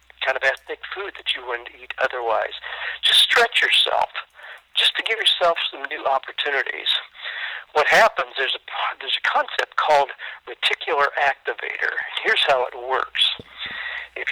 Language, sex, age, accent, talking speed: English, male, 50-69, American, 145 wpm